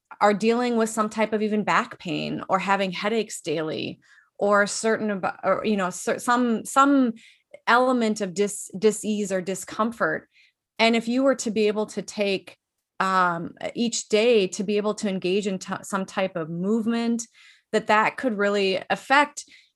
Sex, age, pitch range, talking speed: female, 30-49, 190-225 Hz, 165 wpm